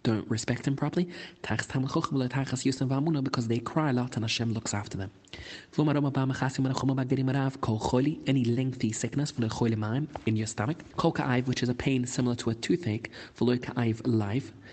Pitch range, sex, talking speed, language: 115-140 Hz, male, 120 wpm, English